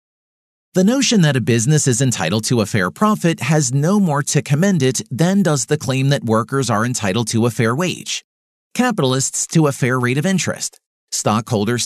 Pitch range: 120-165 Hz